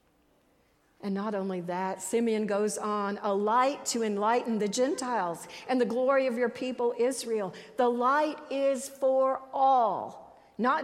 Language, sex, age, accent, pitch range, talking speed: English, female, 50-69, American, 200-245 Hz, 145 wpm